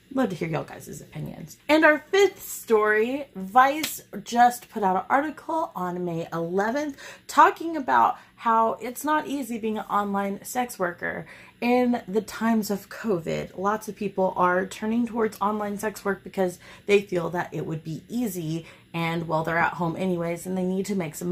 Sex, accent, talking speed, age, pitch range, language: female, American, 180 wpm, 30-49, 180-235 Hz, English